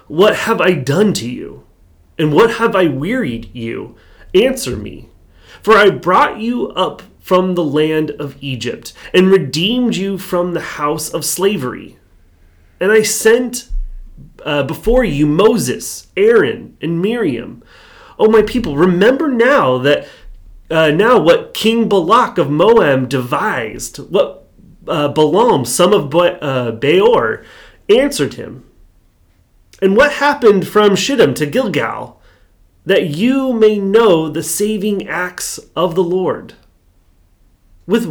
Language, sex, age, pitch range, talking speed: English, male, 30-49, 150-220 Hz, 130 wpm